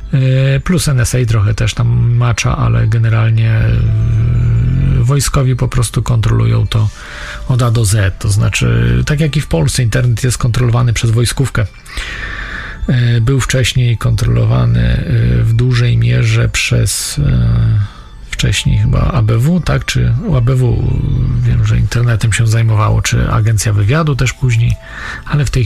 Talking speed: 130 wpm